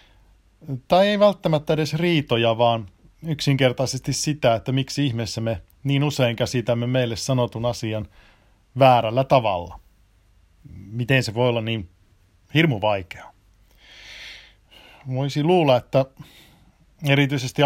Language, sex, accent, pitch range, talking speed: Finnish, male, native, 105-140 Hz, 105 wpm